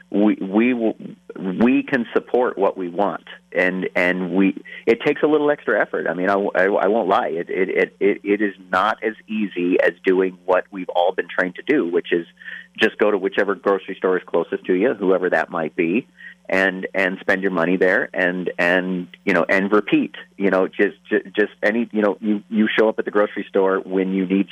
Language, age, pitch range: English, 40-59, 95-120 Hz